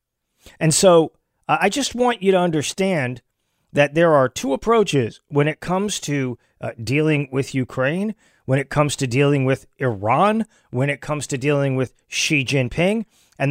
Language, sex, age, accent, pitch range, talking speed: English, male, 40-59, American, 130-170 Hz, 170 wpm